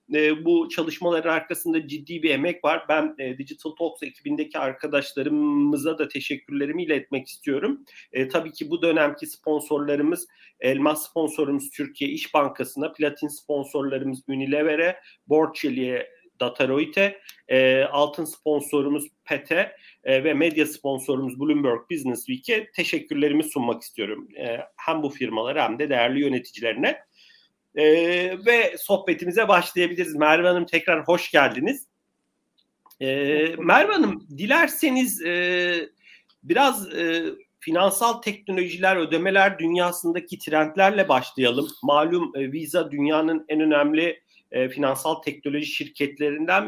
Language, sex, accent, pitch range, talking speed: Turkish, male, native, 145-175 Hz, 110 wpm